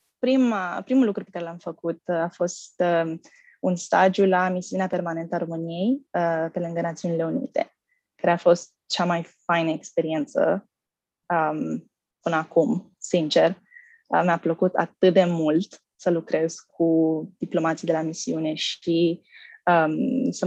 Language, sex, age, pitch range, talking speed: Romanian, female, 20-39, 170-205 Hz, 125 wpm